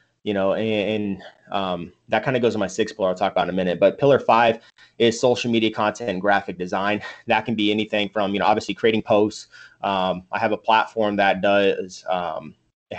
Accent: American